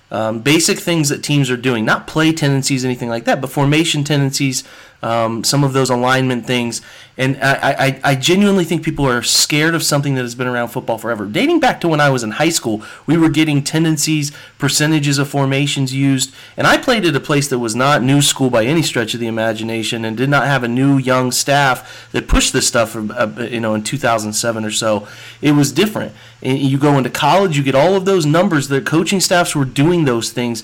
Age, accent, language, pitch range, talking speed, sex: 30-49, American, English, 120-145 Hz, 215 wpm, male